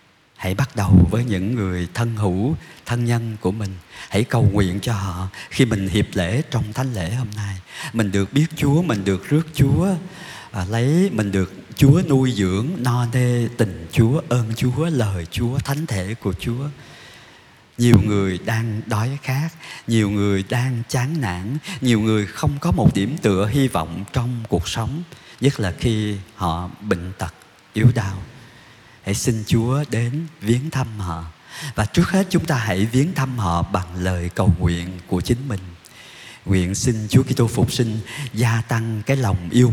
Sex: male